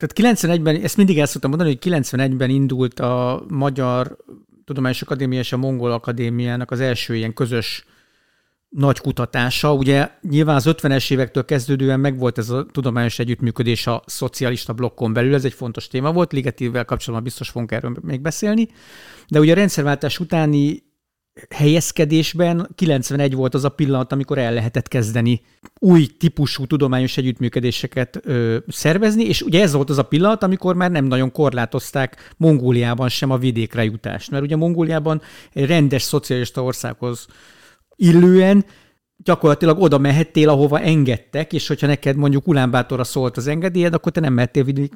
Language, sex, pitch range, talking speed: Hungarian, male, 125-155 Hz, 155 wpm